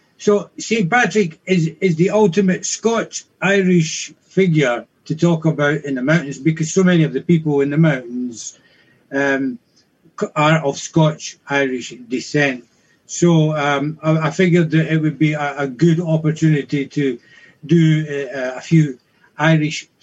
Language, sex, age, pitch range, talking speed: English, male, 60-79, 145-170 Hz, 145 wpm